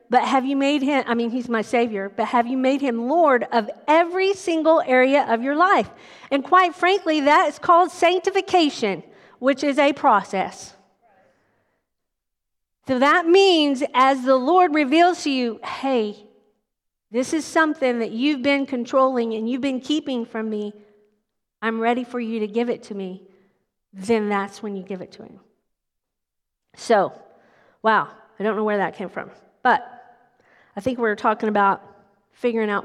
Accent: American